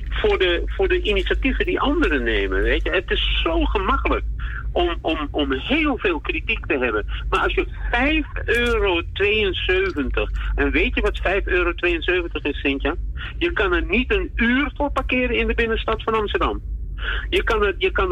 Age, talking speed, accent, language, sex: 50-69, 175 wpm, Dutch, Dutch, male